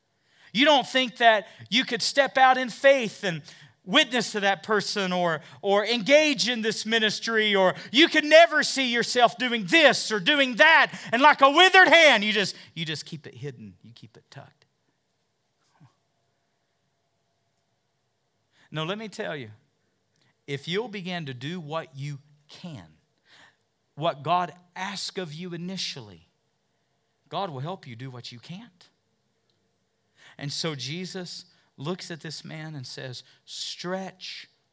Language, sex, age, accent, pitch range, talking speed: English, male, 40-59, American, 130-200 Hz, 150 wpm